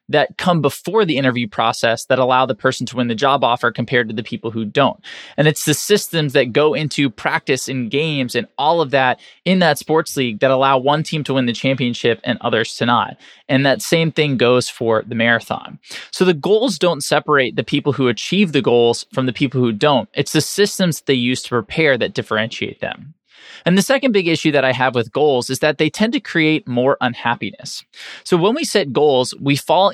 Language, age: English, 20-39